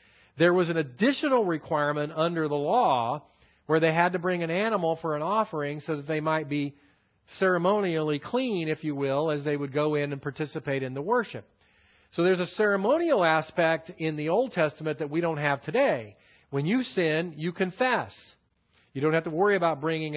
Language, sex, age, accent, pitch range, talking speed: English, male, 40-59, American, 135-180 Hz, 190 wpm